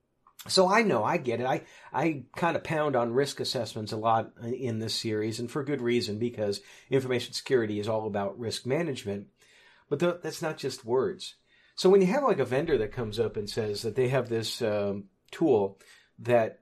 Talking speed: 200 wpm